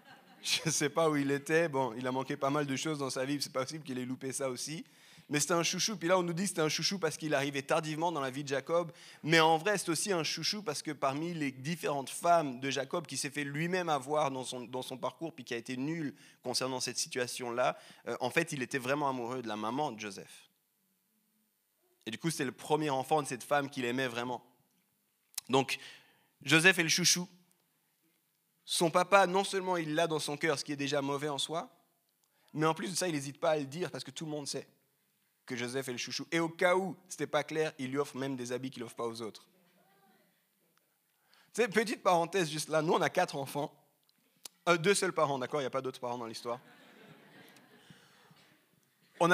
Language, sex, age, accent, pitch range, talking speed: French, male, 30-49, French, 135-175 Hz, 230 wpm